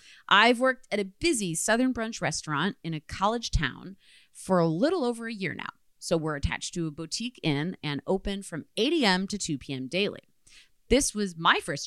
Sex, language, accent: female, English, American